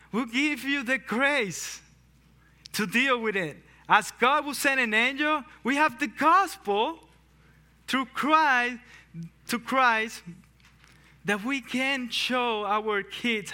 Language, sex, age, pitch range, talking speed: English, male, 20-39, 195-290 Hz, 130 wpm